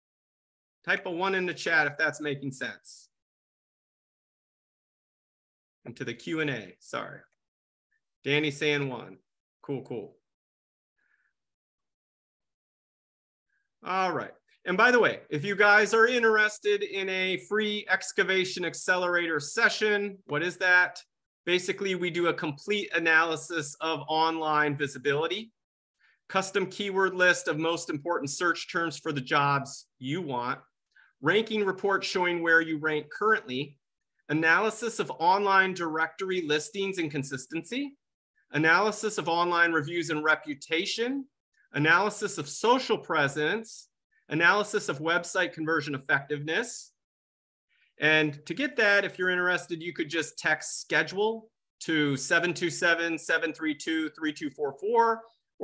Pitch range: 150-195 Hz